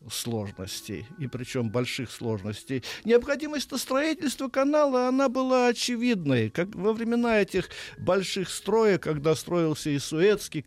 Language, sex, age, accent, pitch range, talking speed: Russian, male, 50-69, native, 120-180 Hz, 120 wpm